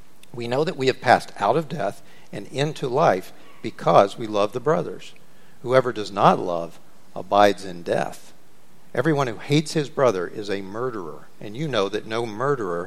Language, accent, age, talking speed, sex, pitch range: English, American, 50-69, 175 wpm, male, 110-155 Hz